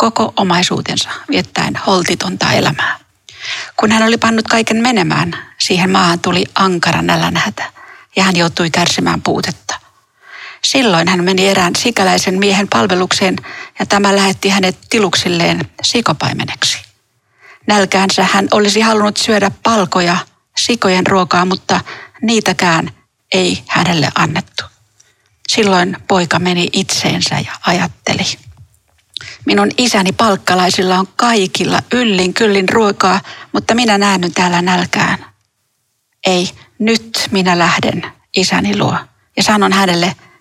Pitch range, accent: 180-220 Hz, native